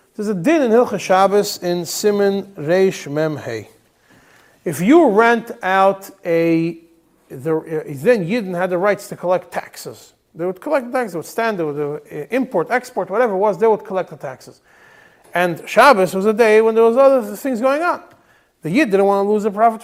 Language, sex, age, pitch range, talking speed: English, male, 40-59, 160-220 Hz, 195 wpm